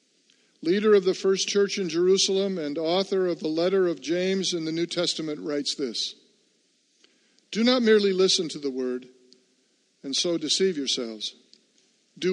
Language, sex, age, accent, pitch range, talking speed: English, male, 50-69, American, 170-210 Hz, 155 wpm